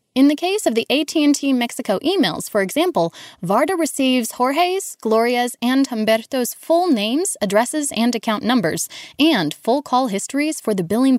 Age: 10-29